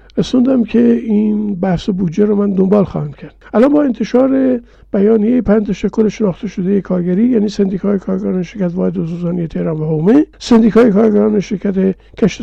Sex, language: male, Persian